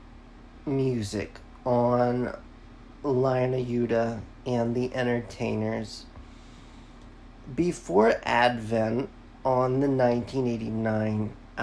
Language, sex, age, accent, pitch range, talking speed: English, male, 40-59, American, 115-150 Hz, 70 wpm